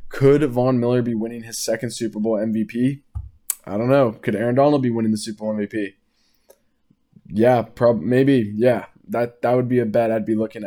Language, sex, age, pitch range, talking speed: English, male, 20-39, 110-125 Hz, 195 wpm